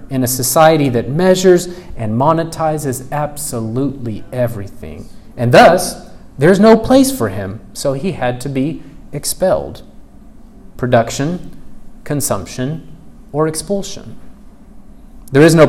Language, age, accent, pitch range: English, 30-49, American, 125-175 Hz